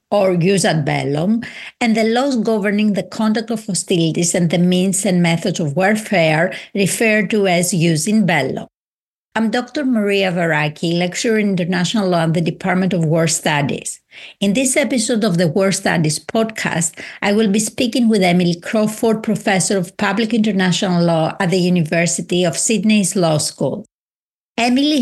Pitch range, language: 175-220 Hz, English